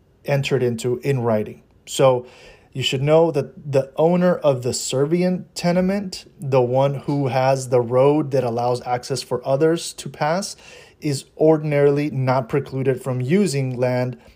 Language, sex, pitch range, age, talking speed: English, male, 120-145 Hz, 30-49, 145 wpm